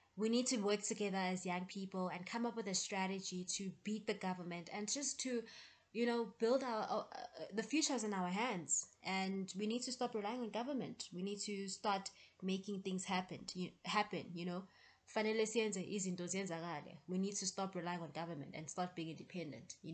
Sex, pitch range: female, 185-220 Hz